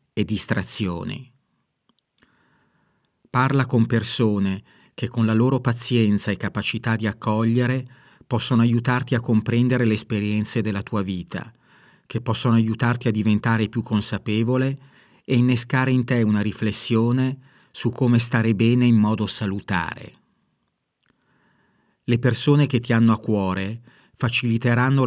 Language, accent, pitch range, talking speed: Italian, native, 105-125 Hz, 120 wpm